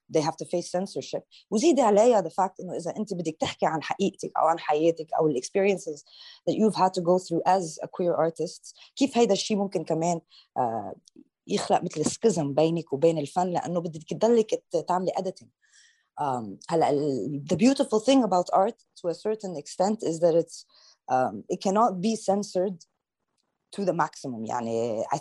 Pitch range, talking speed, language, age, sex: 160-200 Hz, 125 wpm, Arabic, 20-39, female